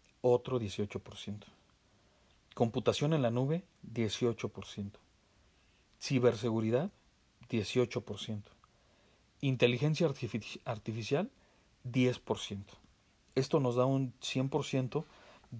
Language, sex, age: Spanish, male, 40-59